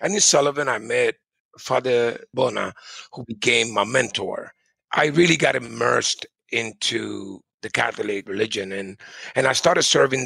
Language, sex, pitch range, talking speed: English, male, 100-120 Hz, 140 wpm